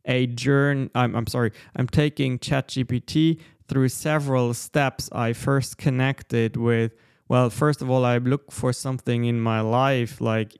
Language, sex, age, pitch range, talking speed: English, male, 20-39, 115-135 Hz, 155 wpm